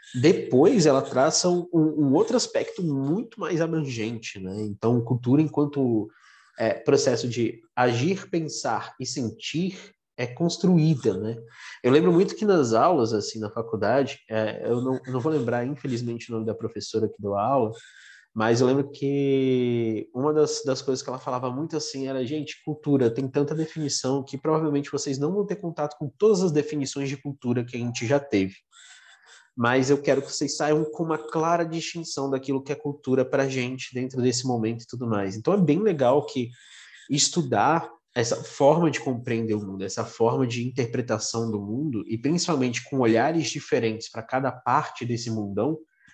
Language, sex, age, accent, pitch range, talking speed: Portuguese, male, 20-39, Brazilian, 120-160 Hz, 175 wpm